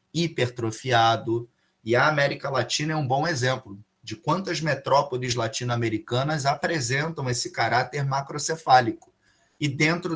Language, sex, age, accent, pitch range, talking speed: Portuguese, male, 20-39, Brazilian, 120-160 Hz, 110 wpm